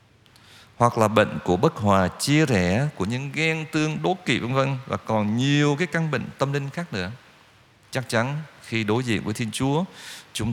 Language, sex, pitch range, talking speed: Vietnamese, male, 95-135 Hz, 200 wpm